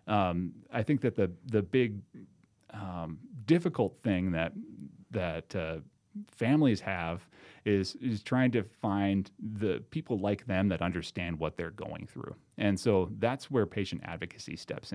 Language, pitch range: English, 90-115 Hz